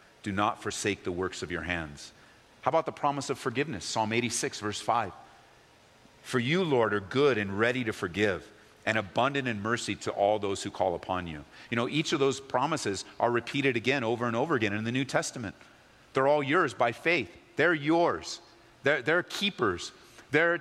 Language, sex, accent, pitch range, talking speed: English, male, American, 115-180 Hz, 190 wpm